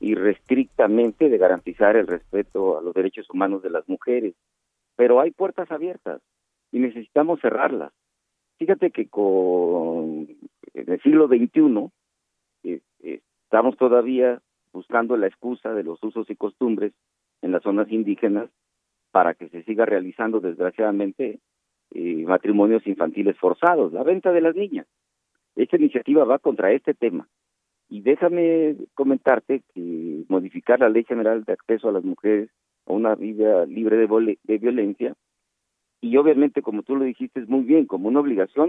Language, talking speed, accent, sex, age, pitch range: Spanish, 145 wpm, Mexican, male, 50-69, 105-150 Hz